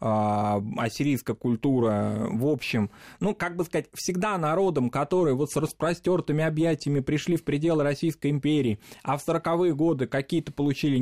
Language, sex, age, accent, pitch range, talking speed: Russian, male, 20-39, native, 115-155 Hz, 140 wpm